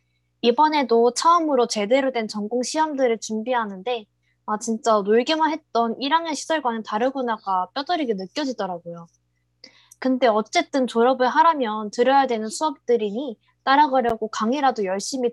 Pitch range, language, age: 200-260 Hz, Korean, 20-39